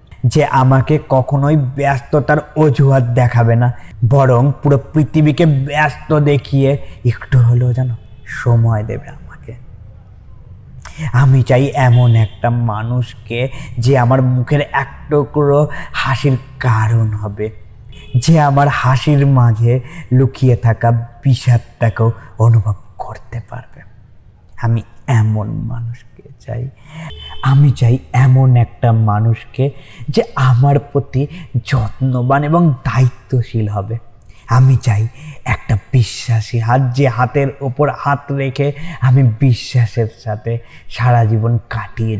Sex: male